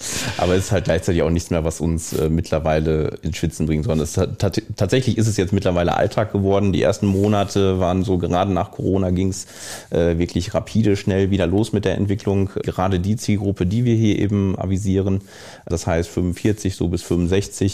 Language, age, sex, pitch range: German, 30-49, male, 90-100 Hz